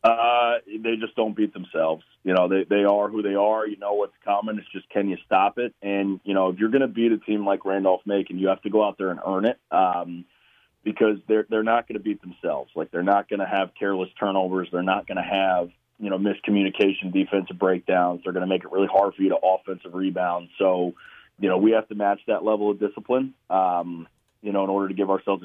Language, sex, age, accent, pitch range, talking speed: English, male, 30-49, American, 90-105 Hz, 245 wpm